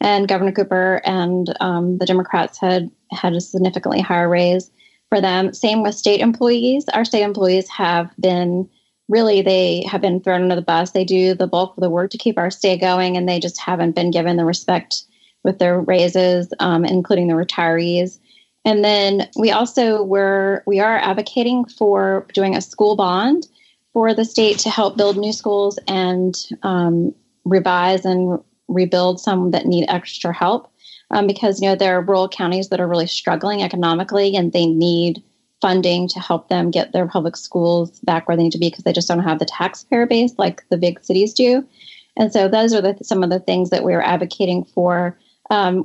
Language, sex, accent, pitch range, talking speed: English, female, American, 180-210 Hz, 195 wpm